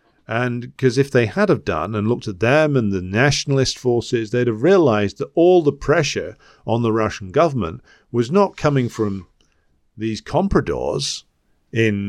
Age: 50-69